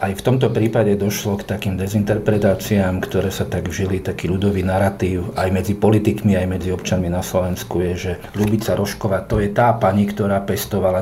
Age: 40-59